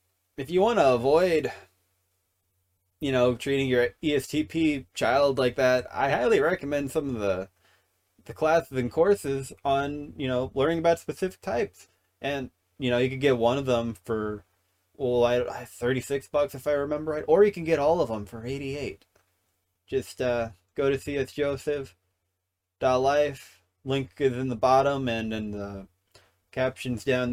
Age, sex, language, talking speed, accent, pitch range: 20-39, male, English, 160 wpm, American, 95-140 Hz